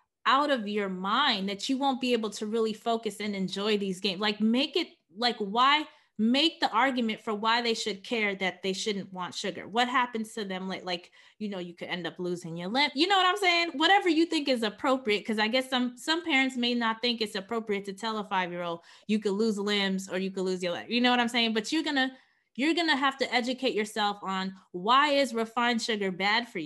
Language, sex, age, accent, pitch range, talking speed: English, female, 20-39, American, 195-255 Hz, 240 wpm